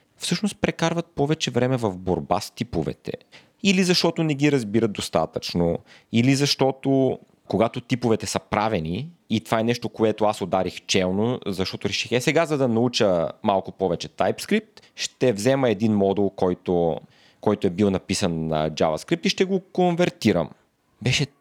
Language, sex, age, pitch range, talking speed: Bulgarian, male, 30-49, 100-135 Hz, 150 wpm